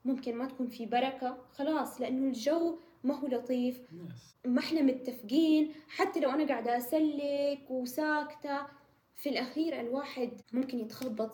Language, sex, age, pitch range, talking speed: English, female, 10-29, 230-280 Hz, 125 wpm